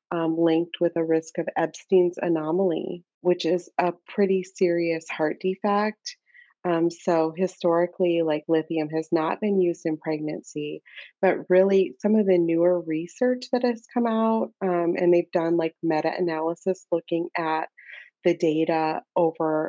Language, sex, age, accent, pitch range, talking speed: English, female, 30-49, American, 165-190 Hz, 145 wpm